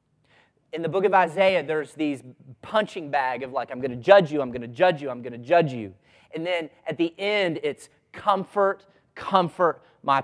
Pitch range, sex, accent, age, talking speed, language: 120-160 Hz, male, American, 30-49, 205 wpm, English